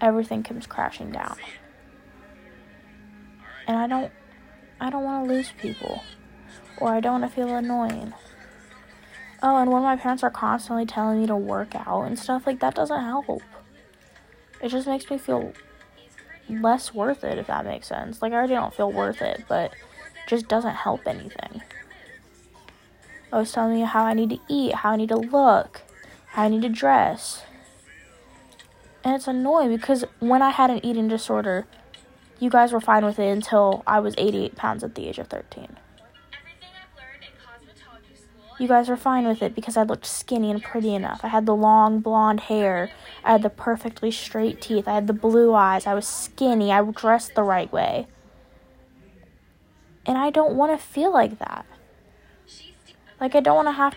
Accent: American